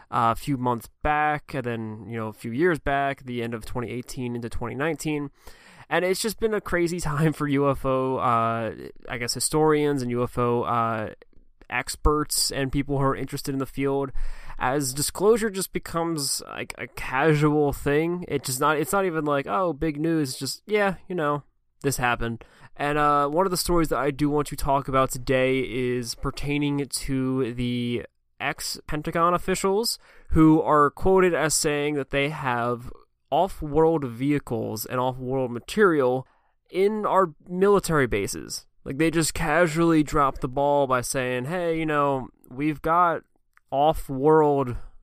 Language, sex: English, male